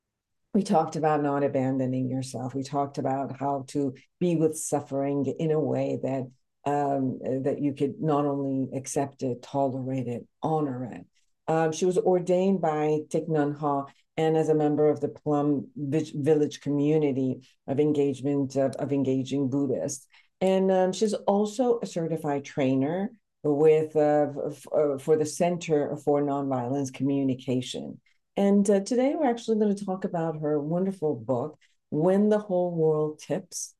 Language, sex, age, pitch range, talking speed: English, female, 50-69, 135-160 Hz, 150 wpm